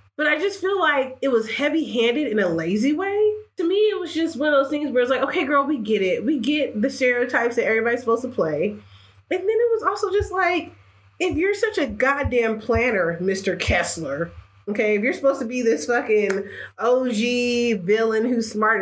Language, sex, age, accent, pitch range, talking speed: English, female, 20-39, American, 190-275 Hz, 210 wpm